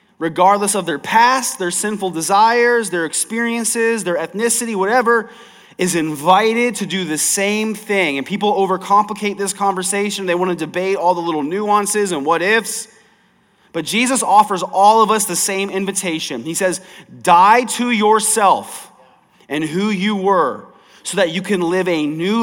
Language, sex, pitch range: English, male, 185-235 Hz